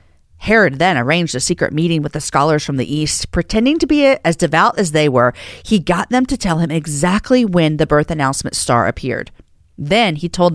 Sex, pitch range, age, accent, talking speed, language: female, 140-195 Hz, 40-59, American, 205 wpm, English